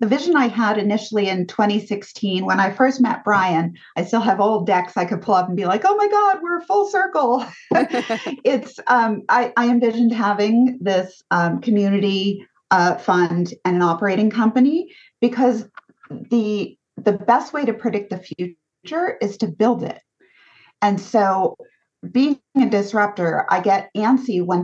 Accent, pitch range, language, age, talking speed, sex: American, 185-245 Hz, English, 40-59, 165 wpm, female